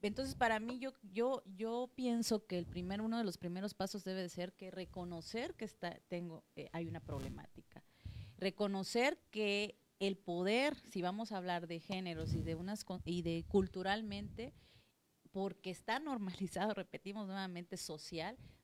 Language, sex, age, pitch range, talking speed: Spanish, female, 30-49, 175-220 Hz, 160 wpm